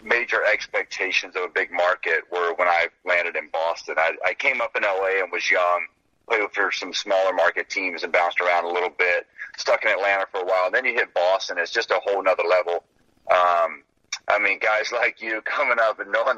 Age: 30-49